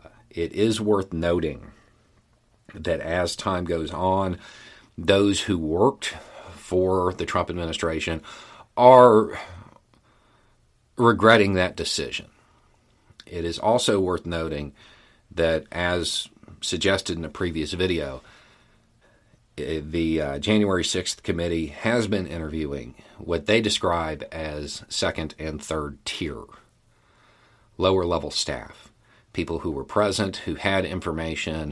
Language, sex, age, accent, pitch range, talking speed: English, male, 40-59, American, 80-105 Hz, 110 wpm